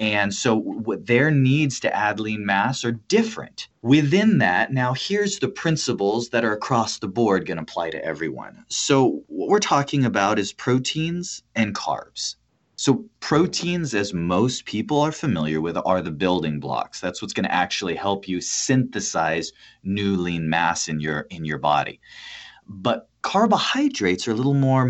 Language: English